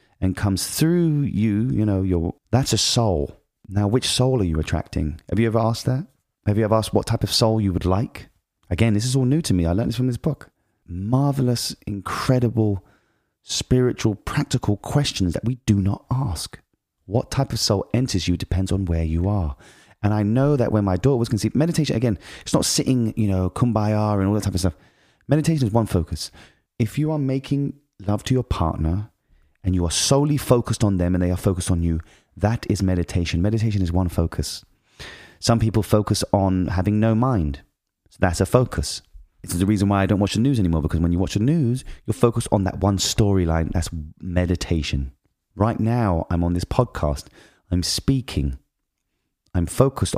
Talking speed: 200 wpm